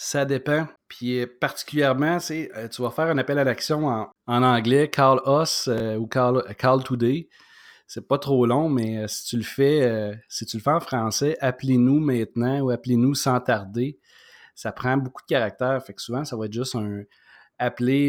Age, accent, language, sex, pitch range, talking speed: 30-49, Canadian, French, male, 110-135 Hz, 210 wpm